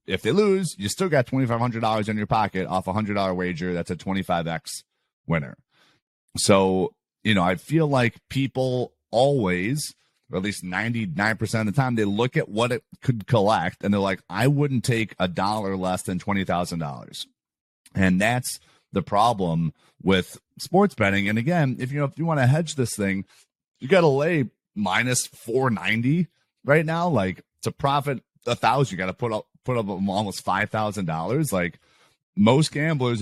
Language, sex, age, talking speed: English, male, 30-49, 165 wpm